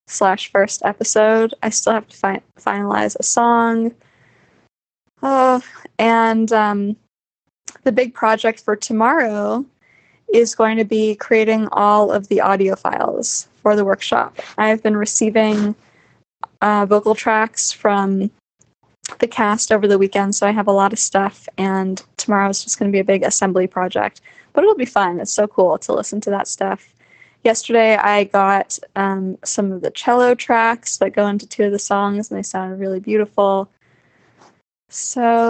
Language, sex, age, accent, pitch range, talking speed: English, female, 10-29, American, 200-230 Hz, 160 wpm